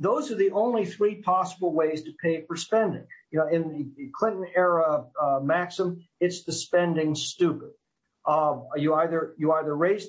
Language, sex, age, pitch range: English, male, 50-69, 150-185 Hz